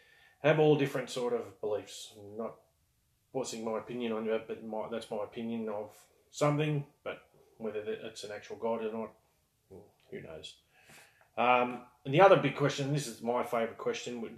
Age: 30-49